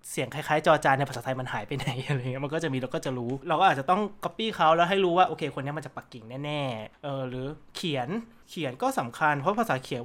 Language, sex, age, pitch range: Thai, male, 20-39, 130-165 Hz